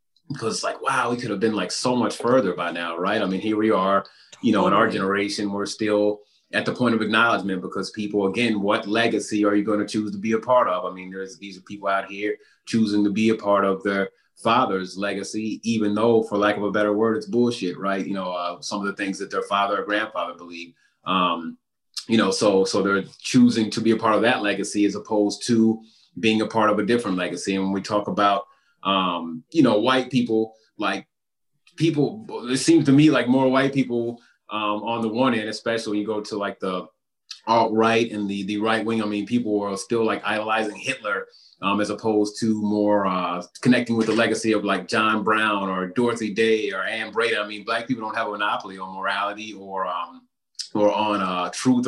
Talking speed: 225 wpm